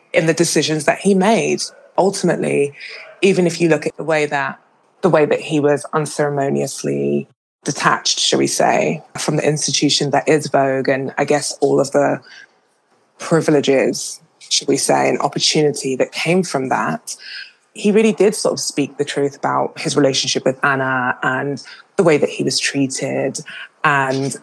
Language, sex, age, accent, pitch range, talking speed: English, female, 20-39, British, 140-165 Hz, 165 wpm